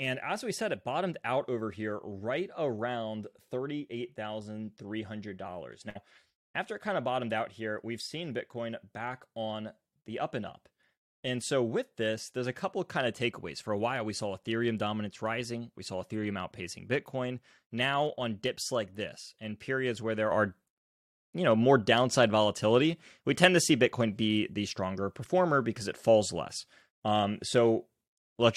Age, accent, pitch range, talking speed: 20-39, American, 105-125 Hz, 185 wpm